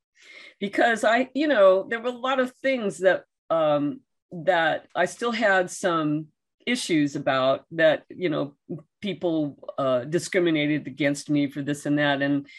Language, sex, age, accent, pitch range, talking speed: English, female, 50-69, American, 160-210 Hz, 155 wpm